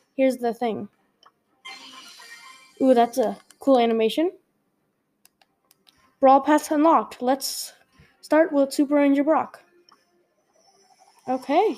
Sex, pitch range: female, 245-300 Hz